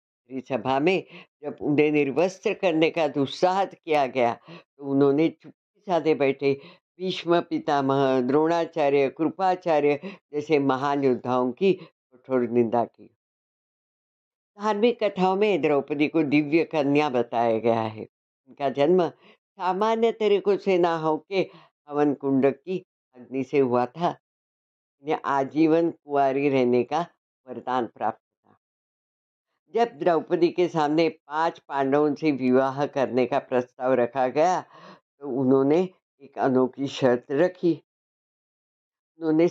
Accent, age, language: native, 60-79, Hindi